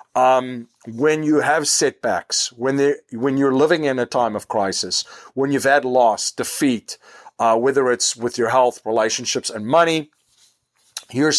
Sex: male